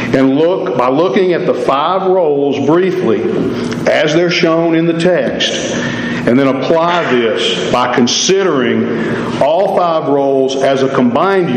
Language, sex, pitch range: English, male, 125-160 Hz